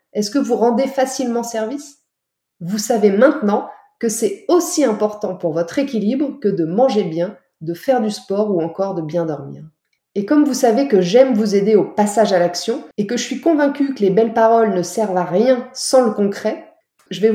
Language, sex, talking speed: French, female, 205 wpm